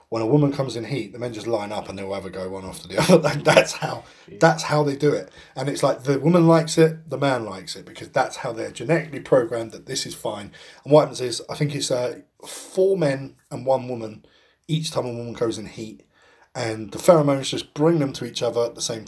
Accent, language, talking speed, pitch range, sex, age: British, English, 250 wpm, 115-160 Hz, male, 20-39